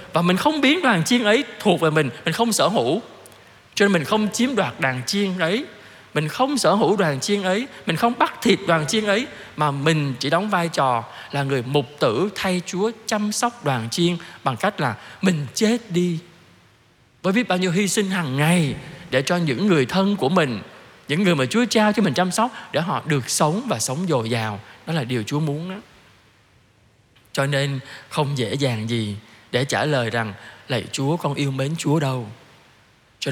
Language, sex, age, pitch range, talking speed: Vietnamese, male, 20-39, 125-180 Hz, 205 wpm